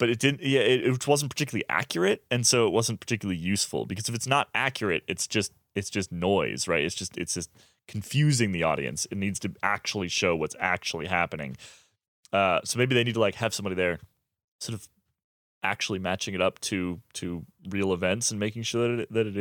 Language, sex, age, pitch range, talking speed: English, male, 20-39, 90-120 Hz, 210 wpm